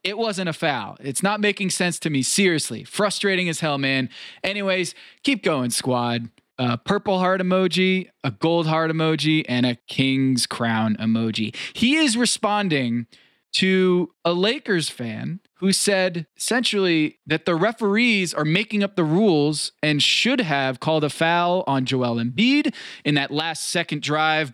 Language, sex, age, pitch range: English, male, 20-39, 140-200 Hz